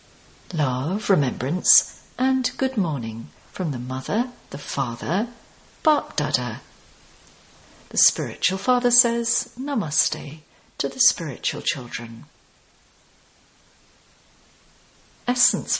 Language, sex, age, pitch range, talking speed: English, female, 50-69, 150-235 Hz, 85 wpm